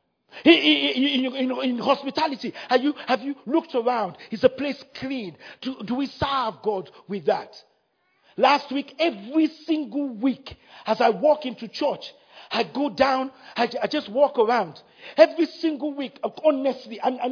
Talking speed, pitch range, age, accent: 155 wpm, 255-335 Hz, 50-69, Nigerian